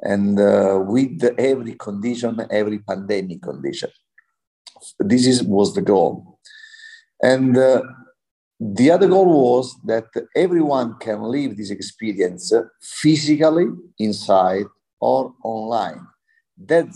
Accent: Italian